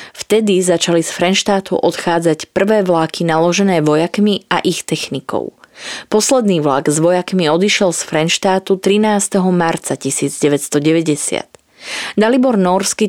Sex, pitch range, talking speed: female, 160-205 Hz, 110 wpm